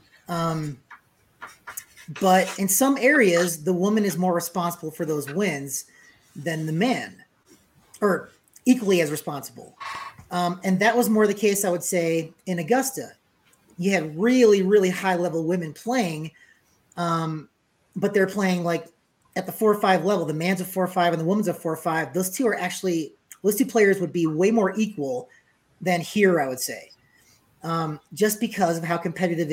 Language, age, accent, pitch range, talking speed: English, 30-49, American, 170-205 Hz, 175 wpm